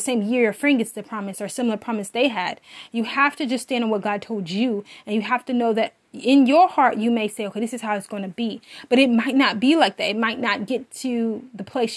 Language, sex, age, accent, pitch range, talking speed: English, female, 20-39, American, 220-265 Hz, 280 wpm